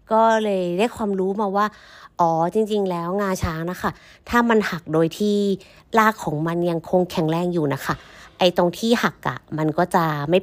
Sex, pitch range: female, 160-200 Hz